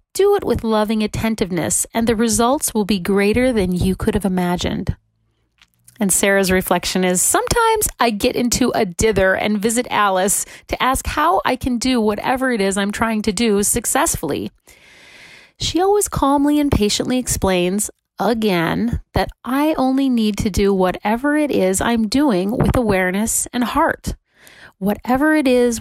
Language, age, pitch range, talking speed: English, 30-49, 195-250 Hz, 160 wpm